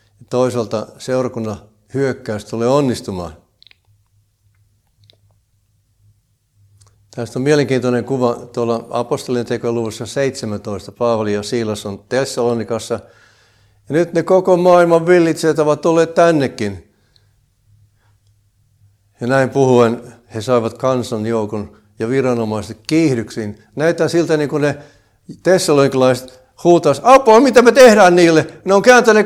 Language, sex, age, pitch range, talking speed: Finnish, male, 60-79, 105-135 Hz, 110 wpm